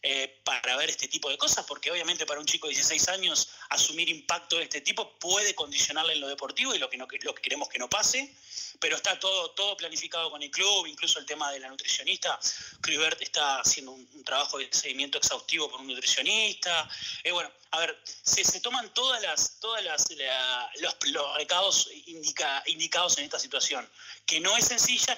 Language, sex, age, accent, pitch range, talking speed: Spanish, male, 30-49, Argentinian, 160-200 Hz, 200 wpm